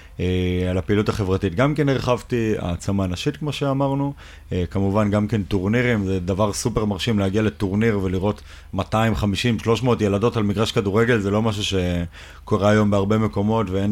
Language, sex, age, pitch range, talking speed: Hebrew, male, 30-49, 95-115 Hz, 145 wpm